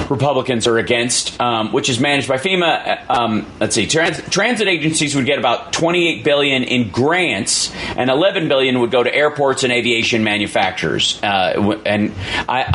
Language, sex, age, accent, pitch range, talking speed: English, male, 30-49, American, 115-145 Hz, 165 wpm